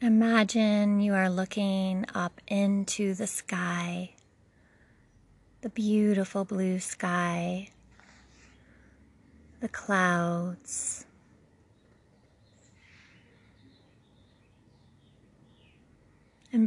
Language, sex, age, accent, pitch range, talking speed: English, female, 30-49, American, 160-205 Hz, 55 wpm